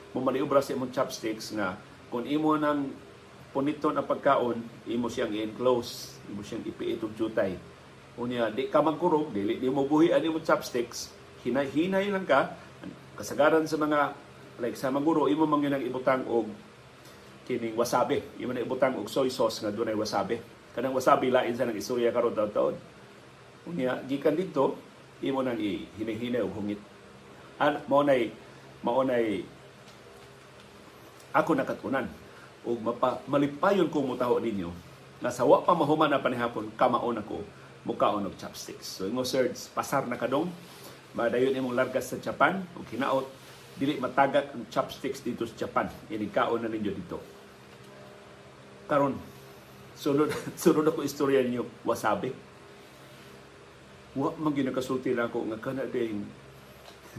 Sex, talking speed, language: male, 145 wpm, Filipino